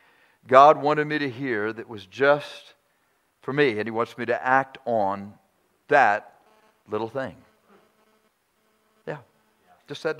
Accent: American